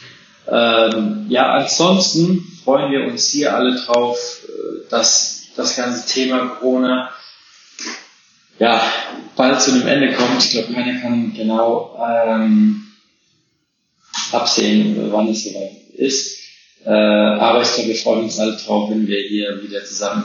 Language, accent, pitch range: German, German, 105-125 Hz